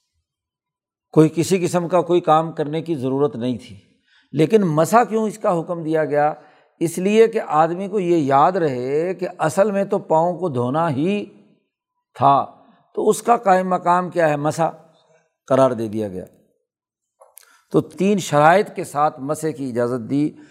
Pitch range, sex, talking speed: 145-180 Hz, male, 165 wpm